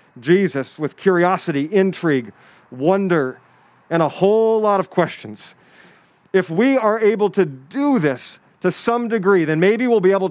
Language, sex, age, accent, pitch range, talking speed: English, male, 40-59, American, 155-195 Hz, 150 wpm